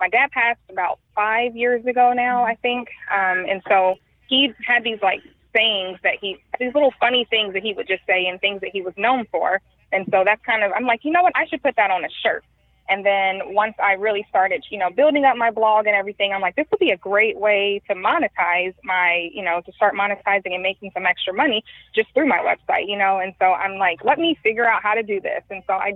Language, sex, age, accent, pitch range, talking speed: English, female, 20-39, American, 195-240 Hz, 250 wpm